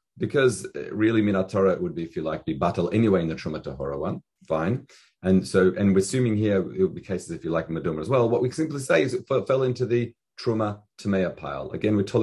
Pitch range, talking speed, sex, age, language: 100-130 Hz, 255 wpm, male, 40-59, English